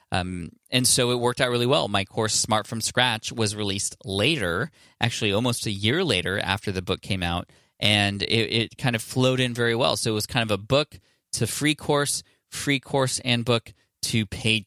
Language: English